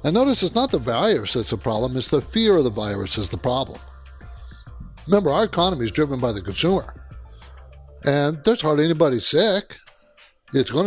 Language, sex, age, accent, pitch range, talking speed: English, male, 60-79, American, 115-165 Hz, 180 wpm